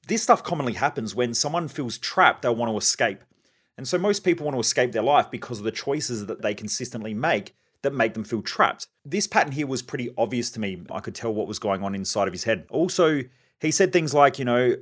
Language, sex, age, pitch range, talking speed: English, male, 30-49, 110-135 Hz, 245 wpm